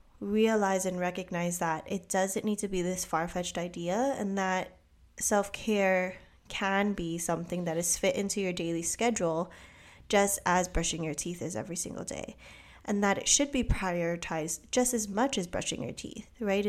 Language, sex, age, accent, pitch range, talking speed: English, female, 10-29, American, 175-205 Hz, 175 wpm